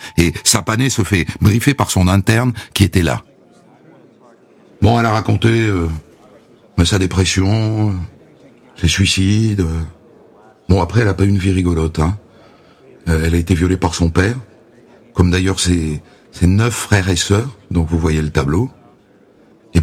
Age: 60-79